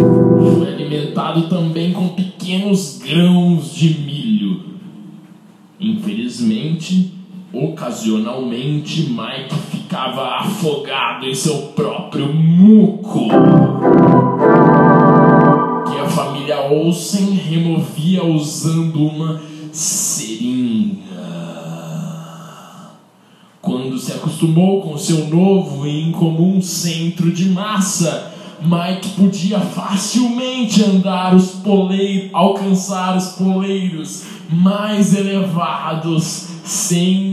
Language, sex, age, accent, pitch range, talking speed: Portuguese, male, 20-39, Brazilian, 165-195 Hz, 75 wpm